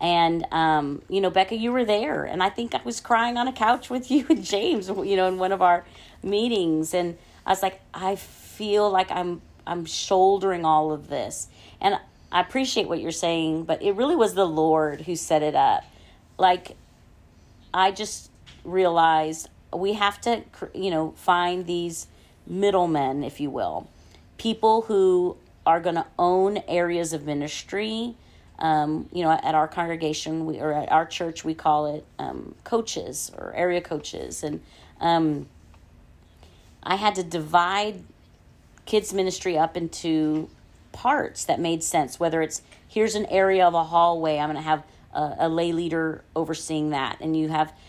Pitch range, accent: 155-195 Hz, American